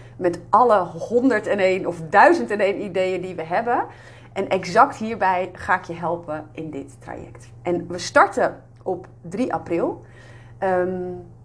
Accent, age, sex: Dutch, 30-49, female